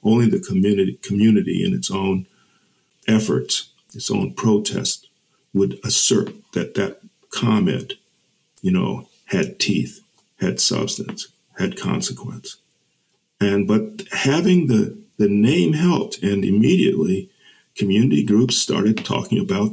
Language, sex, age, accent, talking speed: English, male, 50-69, American, 115 wpm